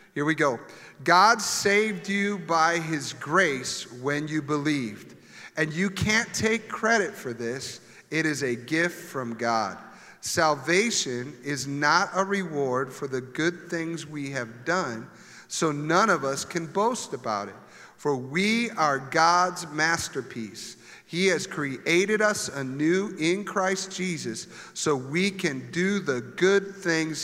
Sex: male